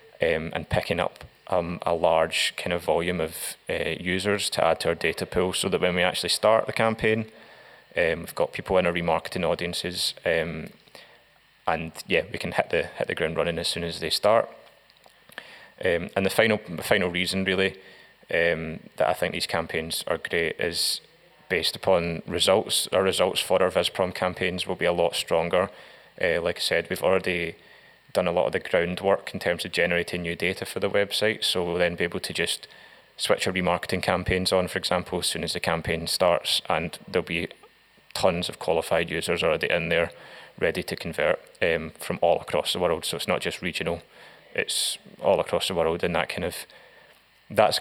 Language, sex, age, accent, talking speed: English, male, 20-39, British, 195 wpm